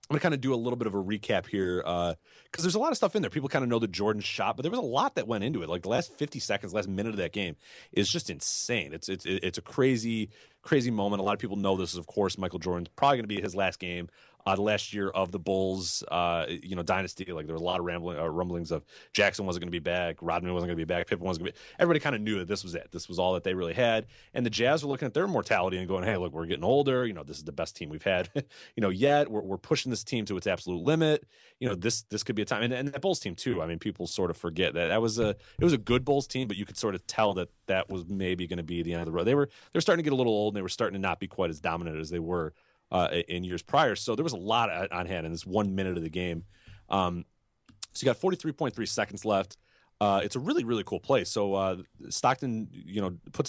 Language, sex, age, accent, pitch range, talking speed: English, male, 30-49, American, 90-120 Hz, 305 wpm